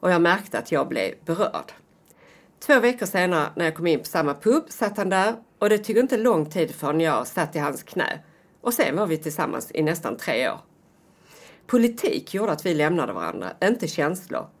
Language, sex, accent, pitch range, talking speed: Swedish, female, native, 155-225 Hz, 205 wpm